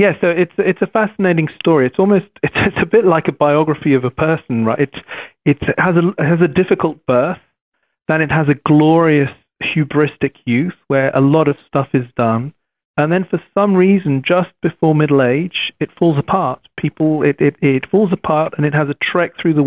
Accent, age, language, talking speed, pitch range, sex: British, 40-59, English, 205 wpm, 135-175 Hz, male